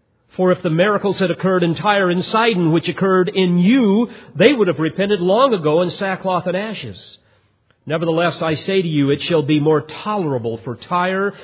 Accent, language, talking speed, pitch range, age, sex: American, English, 190 wpm, 115-180 Hz, 50-69, male